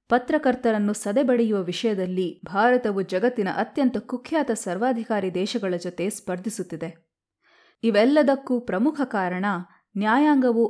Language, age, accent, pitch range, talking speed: Kannada, 20-39, native, 195-250 Hz, 85 wpm